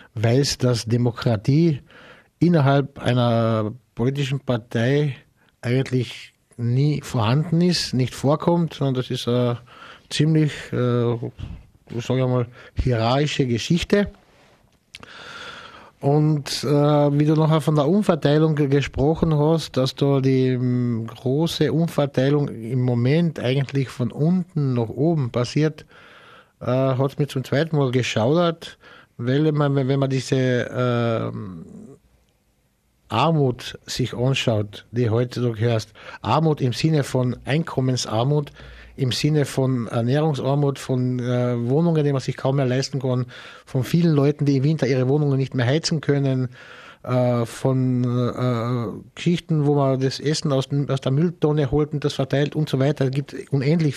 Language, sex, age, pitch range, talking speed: German, male, 60-79, 125-150 Hz, 130 wpm